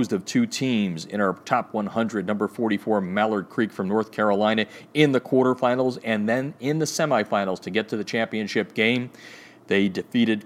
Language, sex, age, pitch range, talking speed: English, male, 40-59, 110-160 Hz, 170 wpm